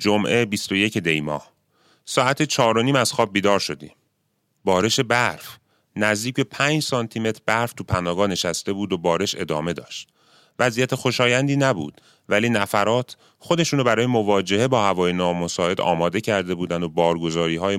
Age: 30-49